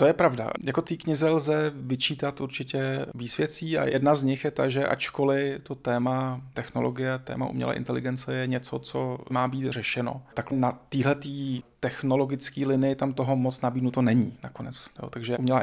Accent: native